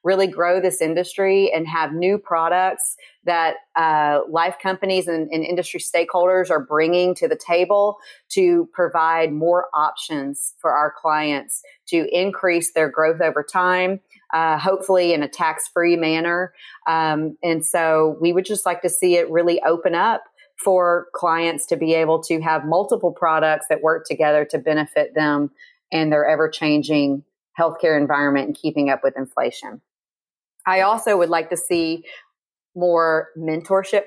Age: 30-49